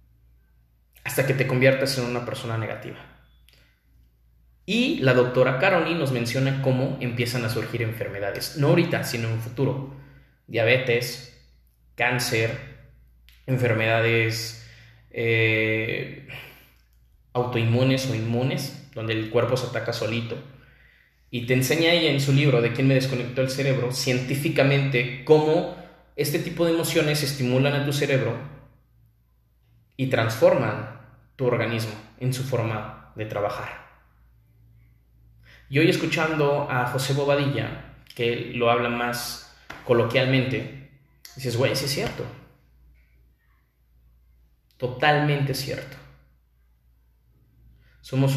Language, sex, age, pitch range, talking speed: Spanish, male, 20-39, 110-135 Hz, 110 wpm